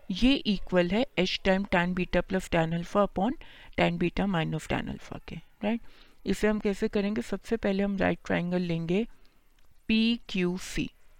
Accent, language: native, Hindi